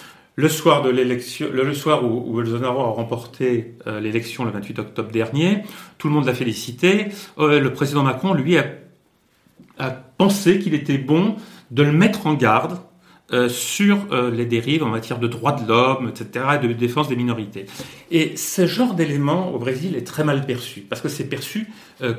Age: 40-59